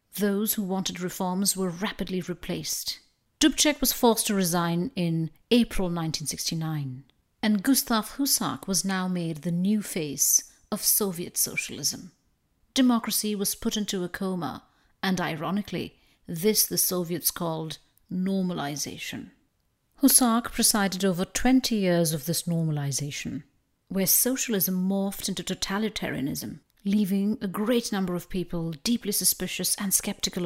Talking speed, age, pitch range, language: 125 wpm, 50-69, 170-215 Hz, English